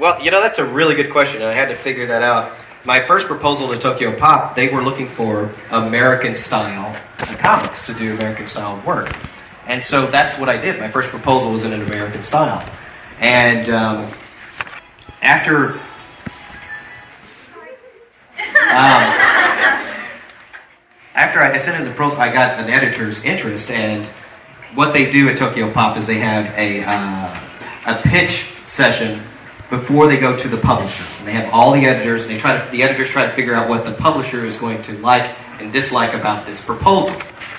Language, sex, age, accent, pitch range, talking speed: English, male, 30-49, American, 110-140 Hz, 170 wpm